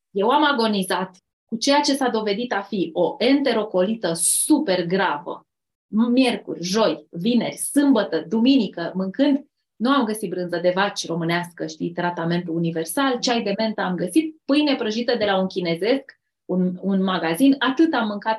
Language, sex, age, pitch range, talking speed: Romanian, female, 20-39, 185-275 Hz, 155 wpm